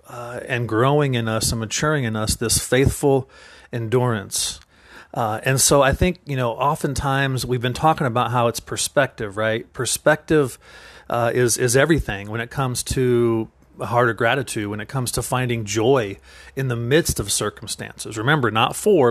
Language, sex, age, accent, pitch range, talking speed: English, male, 40-59, American, 115-145 Hz, 180 wpm